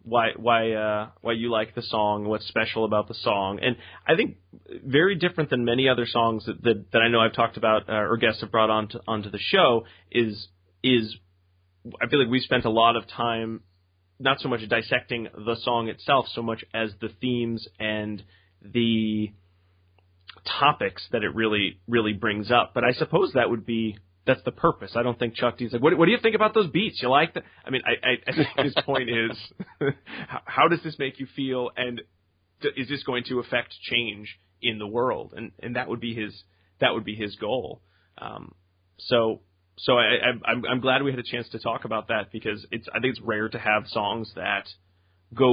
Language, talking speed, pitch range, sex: English, 210 wpm, 105-120 Hz, male